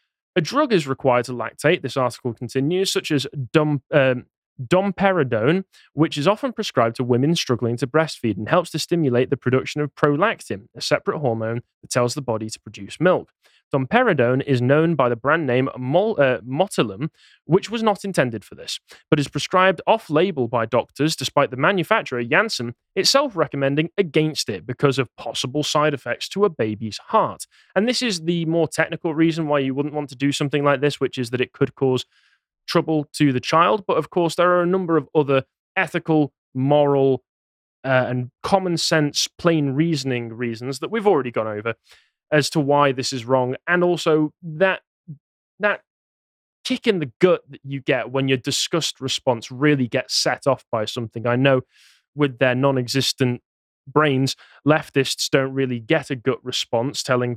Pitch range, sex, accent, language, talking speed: 125-165 Hz, male, British, English, 175 wpm